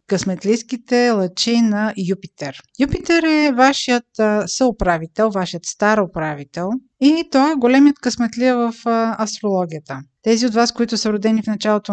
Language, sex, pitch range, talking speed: Bulgarian, female, 190-240 Hz, 130 wpm